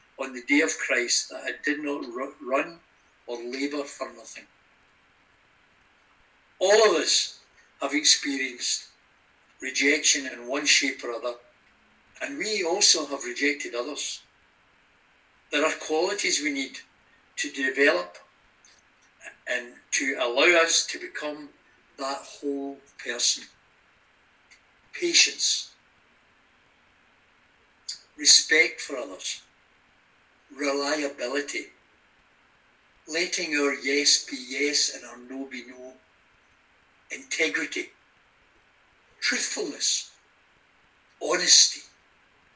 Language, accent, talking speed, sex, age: English, British, 90 wpm, male, 60-79